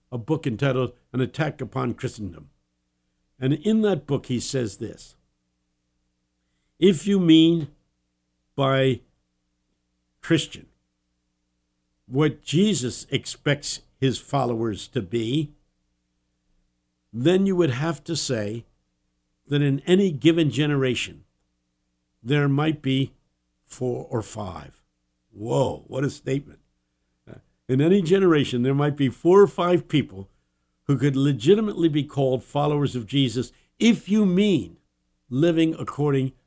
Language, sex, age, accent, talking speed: English, male, 60-79, American, 115 wpm